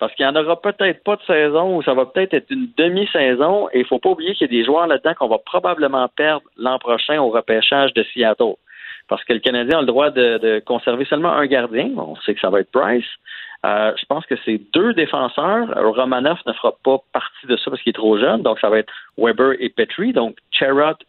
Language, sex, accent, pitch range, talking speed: French, male, Canadian, 115-165 Hz, 240 wpm